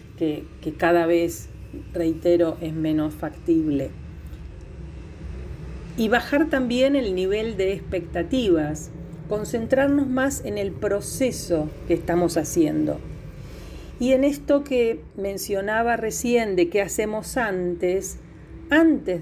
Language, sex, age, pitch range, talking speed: Spanish, female, 40-59, 160-210 Hz, 105 wpm